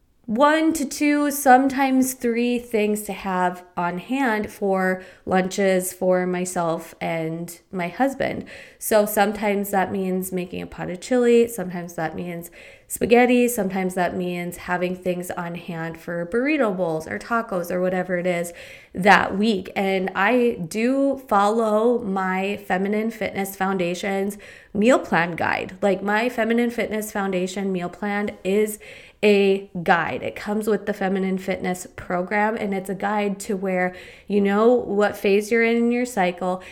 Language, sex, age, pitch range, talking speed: English, female, 20-39, 185-215 Hz, 150 wpm